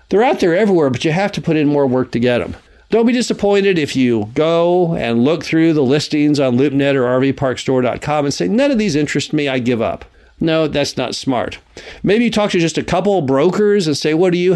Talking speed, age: 235 wpm, 50-69